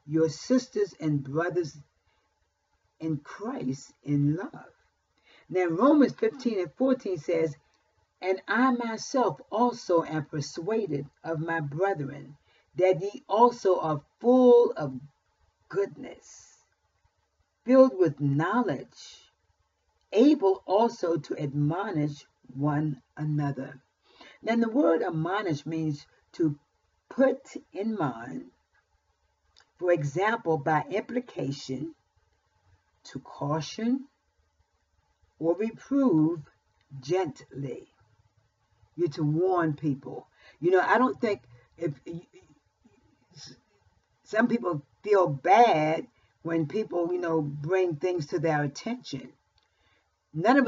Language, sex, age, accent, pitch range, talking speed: English, female, 50-69, American, 140-195 Hz, 95 wpm